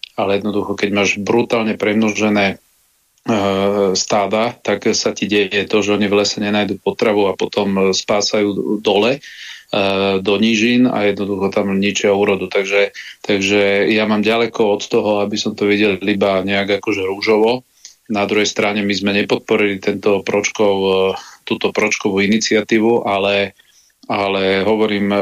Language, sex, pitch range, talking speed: Slovak, male, 100-105 Hz, 140 wpm